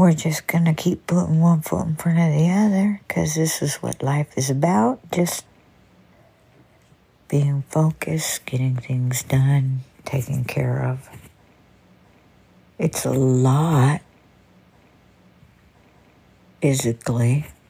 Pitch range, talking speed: 130-160 Hz, 110 wpm